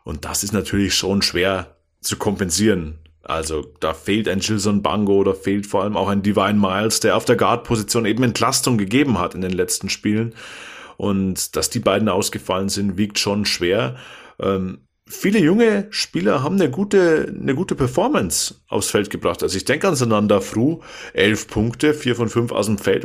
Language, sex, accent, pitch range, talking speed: German, male, German, 100-130 Hz, 175 wpm